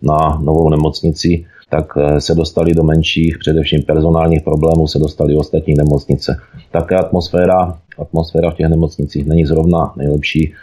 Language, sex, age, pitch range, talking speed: Czech, male, 30-49, 75-85 Hz, 140 wpm